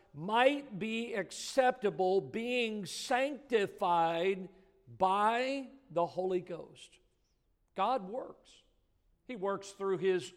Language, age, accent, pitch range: English, 50-69, American, 180-225 Hz